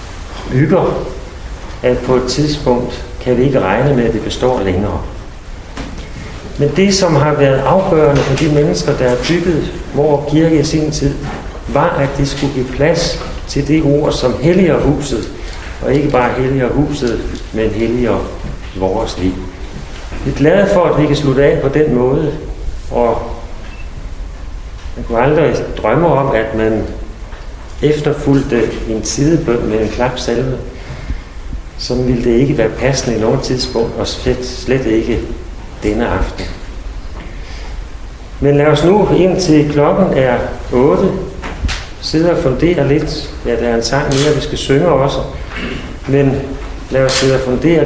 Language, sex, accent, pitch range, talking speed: Danish, male, native, 95-145 Hz, 150 wpm